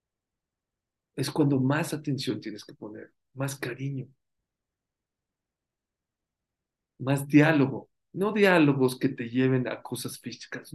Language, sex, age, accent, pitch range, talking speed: English, male, 50-69, Mexican, 130-155 Hz, 105 wpm